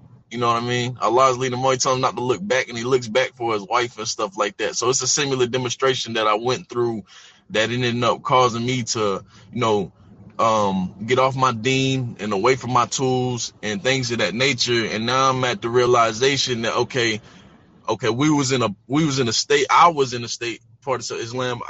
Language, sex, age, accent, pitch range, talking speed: English, male, 20-39, American, 120-135 Hz, 235 wpm